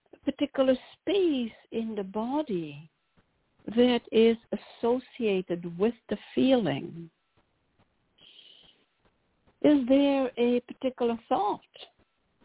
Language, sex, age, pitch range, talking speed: English, female, 60-79, 185-260 Hz, 75 wpm